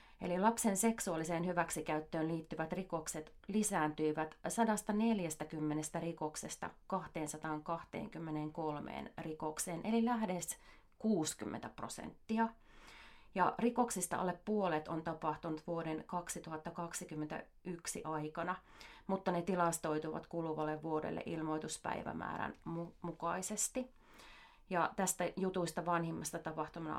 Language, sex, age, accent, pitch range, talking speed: Finnish, female, 30-49, native, 155-185 Hz, 80 wpm